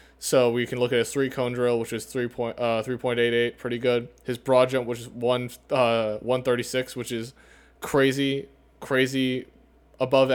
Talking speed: 175 wpm